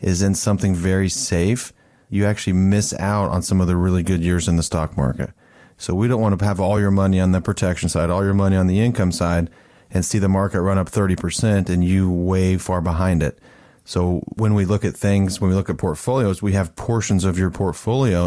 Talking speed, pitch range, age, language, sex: 225 wpm, 90-105 Hz, 30-49, English, male